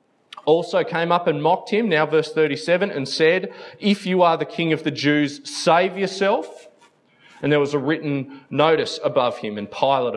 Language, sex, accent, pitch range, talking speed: English, male, Australian, 125-200 Hz, 185 wpm